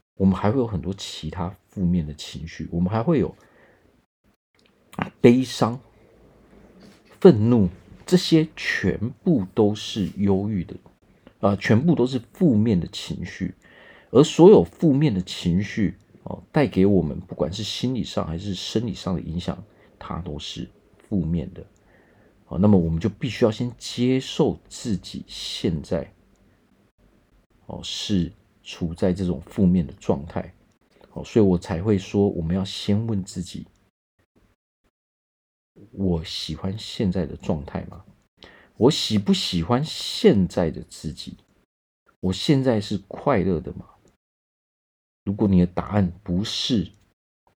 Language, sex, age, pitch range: Chinese, male, 40-59, 90-110 Hz